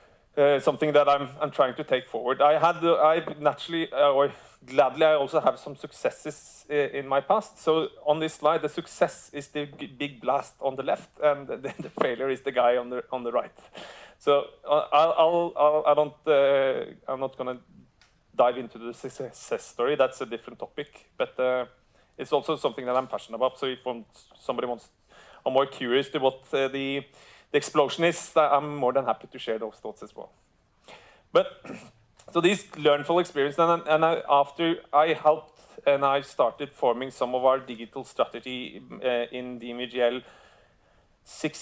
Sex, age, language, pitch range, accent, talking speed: male, 30-49, English, 125-150 Hz, Norwegian, 190 wpm